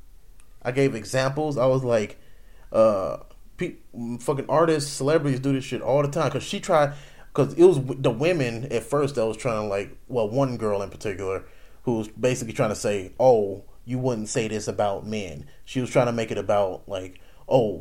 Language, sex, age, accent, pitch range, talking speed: English, male, 30-49, American, 105-140 Hz, 195 wpm